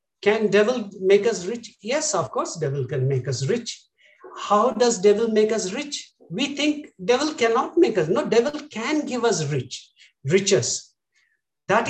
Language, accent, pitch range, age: English, Indian, 155-230 Hz, 60-79